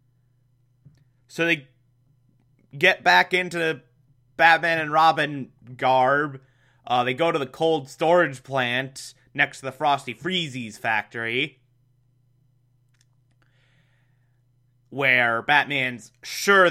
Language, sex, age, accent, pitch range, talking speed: English, male, 20-39, American, 125-165 Hz, 95 wpm